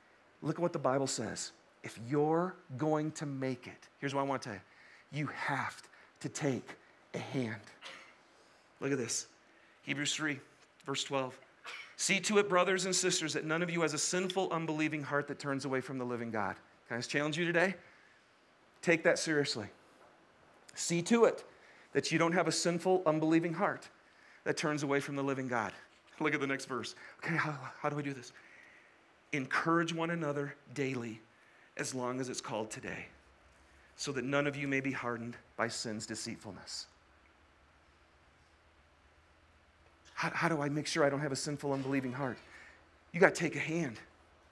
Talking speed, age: 180 wpm, 40-59